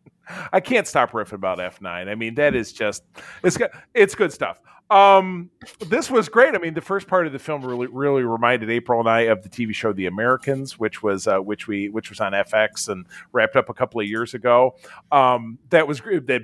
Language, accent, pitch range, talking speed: English, American, 110-165 Hz, 225 wpm